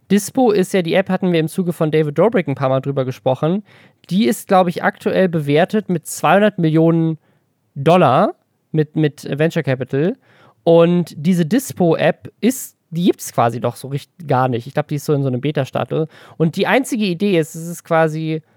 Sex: male